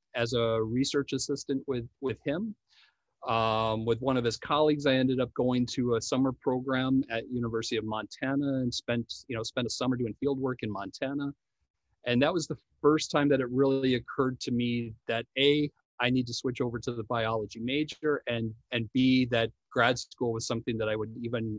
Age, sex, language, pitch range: 40-59, male, English, 115-135 Hz